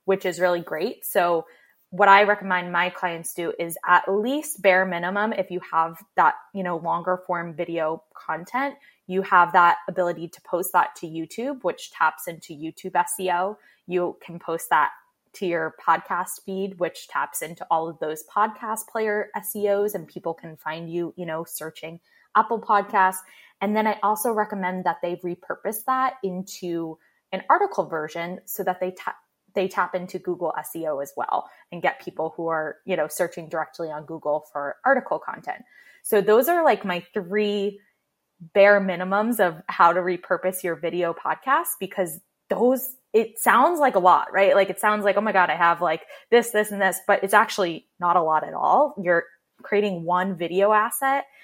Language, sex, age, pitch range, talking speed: English, female, 20-39, 170-205 Hz, 180 wpm